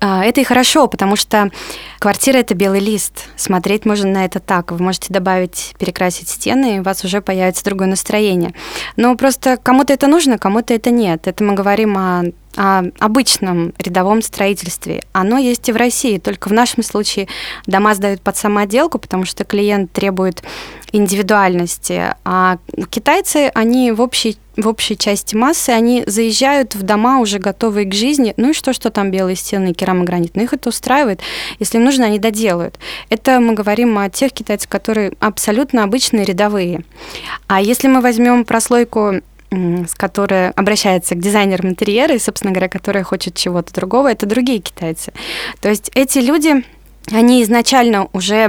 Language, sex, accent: Russian, female, native